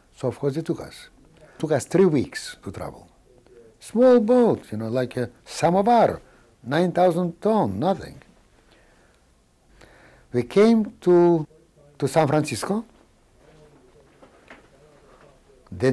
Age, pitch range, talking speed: 60-79, 110-155 Hz, 115 wpm